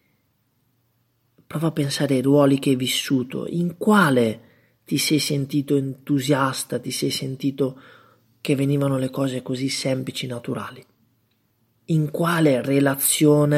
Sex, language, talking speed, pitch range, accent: male, Italian, 120 wpm, 125-165 Hz, native